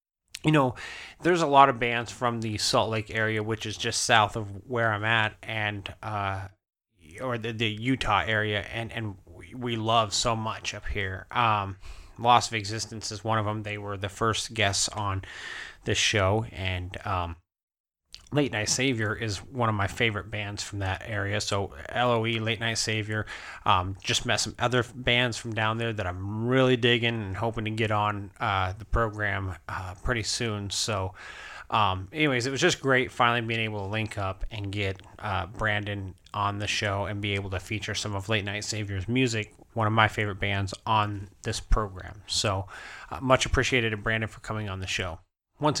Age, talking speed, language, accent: 20-39, 190 wpm, English, American